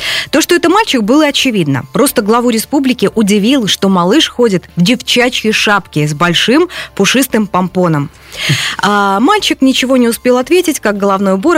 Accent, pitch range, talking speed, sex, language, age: native, 185-270 Hz, 145 wpm, female, Russian, 20-39